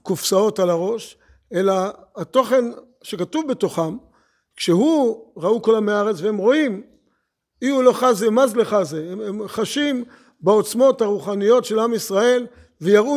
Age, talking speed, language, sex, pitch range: 50-69, 130 wpm, Hebrew, male, 200-245 Hz